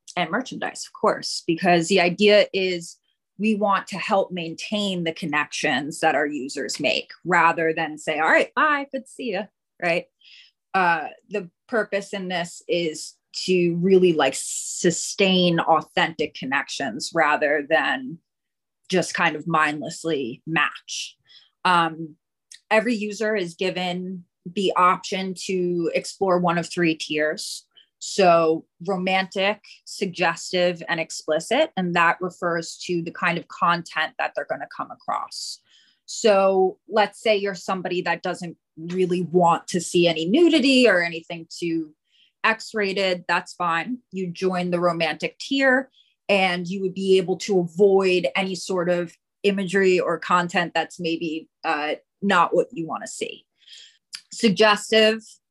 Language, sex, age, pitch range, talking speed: English, female, 30-49, 170-200 Hz, 135 wpm